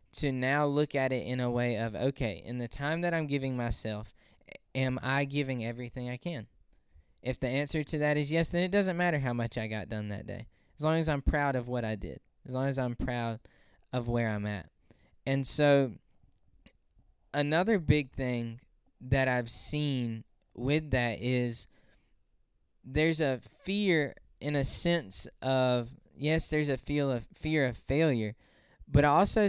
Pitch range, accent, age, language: 115-145 Hz, American, 10-29, English